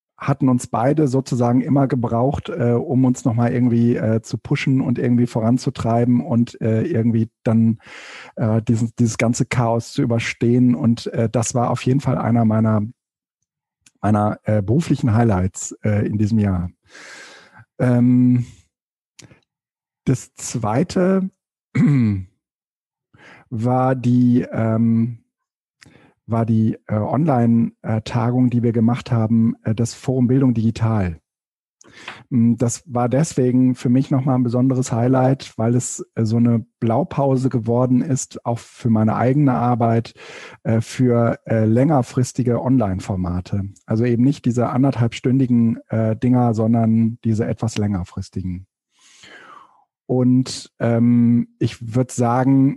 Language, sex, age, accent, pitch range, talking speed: German, male, 50-69, German, 115-130 Hz, 115 wpm